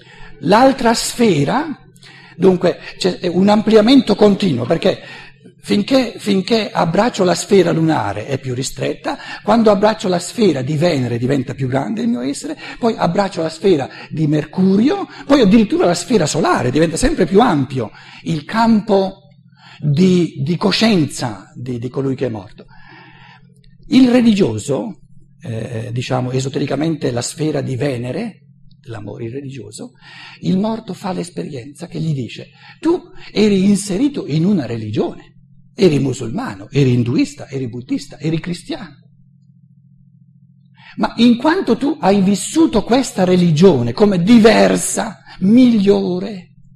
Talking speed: 125 wpm